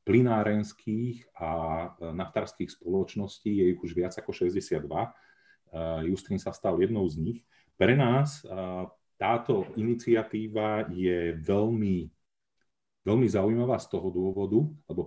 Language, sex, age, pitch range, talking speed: Slovak, male, 30-49, 85-110 Hz, 120 wpm